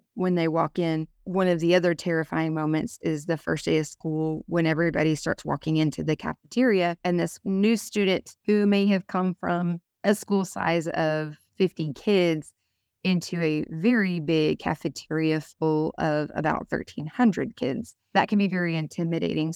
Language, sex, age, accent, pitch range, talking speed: English, female, 20-39, American, 160-185 Hz, 165 wpm